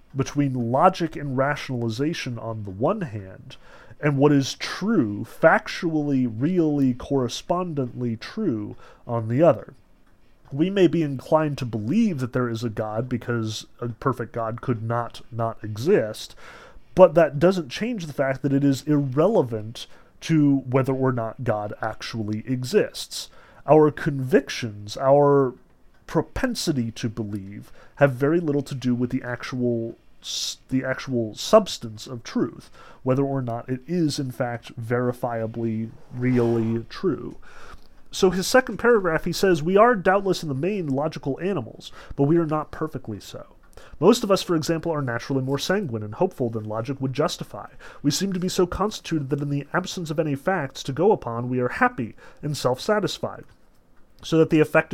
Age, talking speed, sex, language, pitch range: 30-49, 155 wpm, male, English, 120-165 Hz